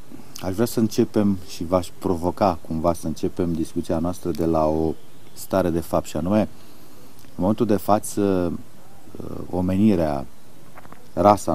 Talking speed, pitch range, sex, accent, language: 135 wpm, 90-105 Hz, male, native, Romanian